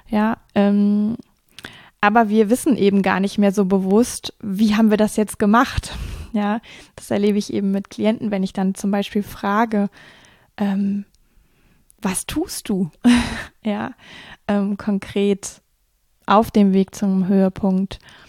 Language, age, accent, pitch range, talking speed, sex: German, 20-39, German, 195-215 Hz, 140 wpm, female